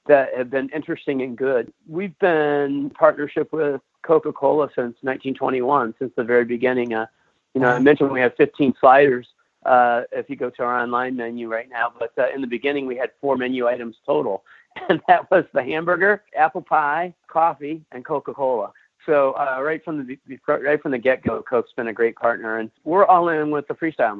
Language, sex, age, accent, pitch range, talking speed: English, male, 50-69, American, 120-155 Hz, 195 wpm